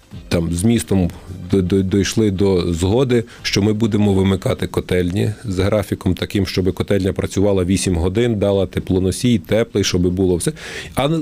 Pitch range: 95-115 Hz